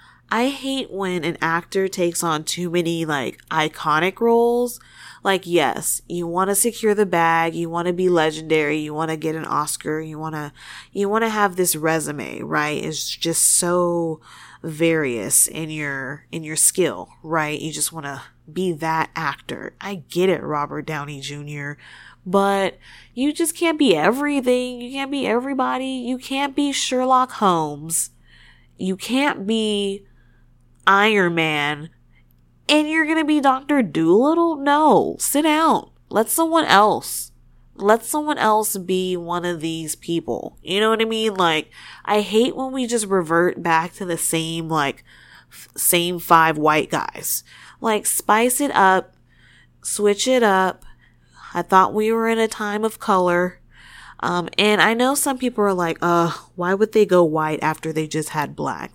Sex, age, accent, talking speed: female, 20-39, American, 165 wpm